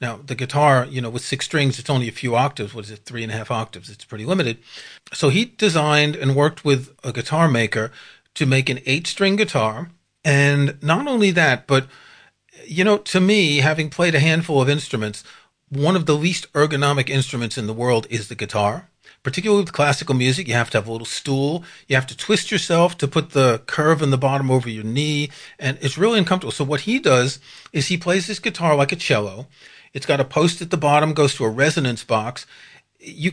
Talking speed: 215 wpm